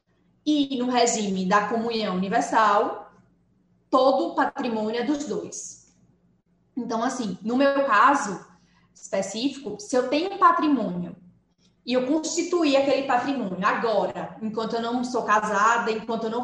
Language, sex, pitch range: Portuguese, female, 220-295 Hz